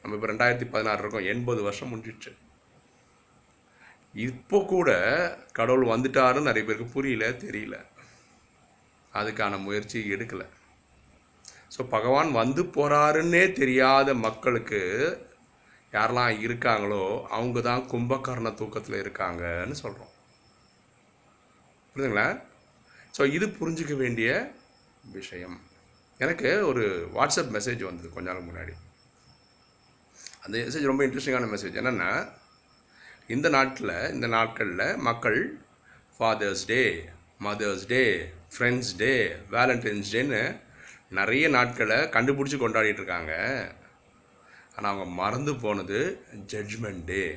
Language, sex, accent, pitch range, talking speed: Tamil, male, native, 100-130 Hz, 95 wpm